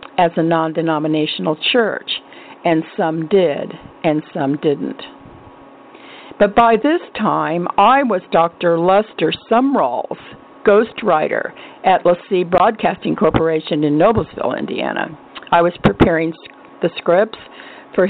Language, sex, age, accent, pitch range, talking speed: English, female, 50-69, American, 160-200 Hz, 115 wpm